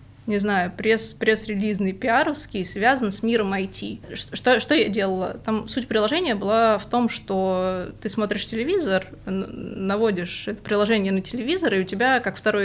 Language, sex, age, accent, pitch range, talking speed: Russian, female, 20-39, native, 195-230 Hz, 155 wpm